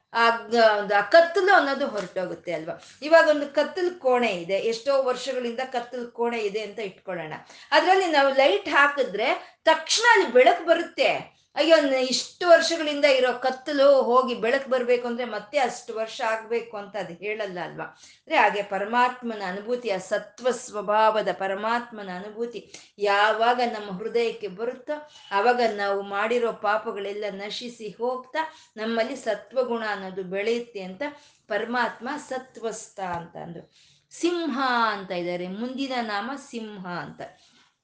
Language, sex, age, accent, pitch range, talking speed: Kannada, female, 20-39, native, 210-280 Hz, 120 wpm